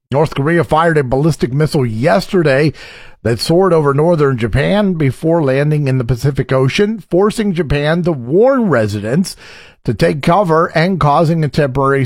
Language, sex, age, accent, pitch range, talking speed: English, male, 50-69, American, 135-180 Hz, 150 wpm